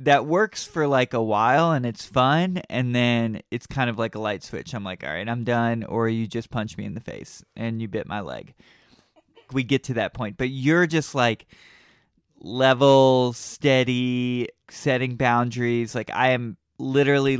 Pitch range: 115-140 Hz